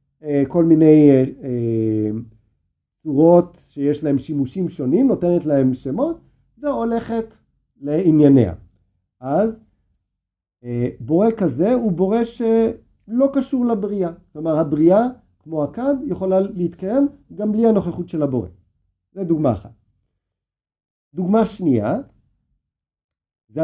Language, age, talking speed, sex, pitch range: Hebrew, 50-69, 100 wpm, male, 115-190 Hz